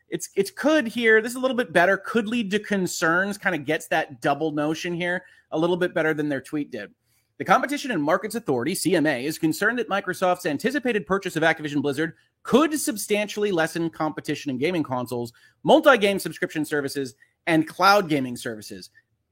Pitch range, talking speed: 140-200 Hz, 180 wpm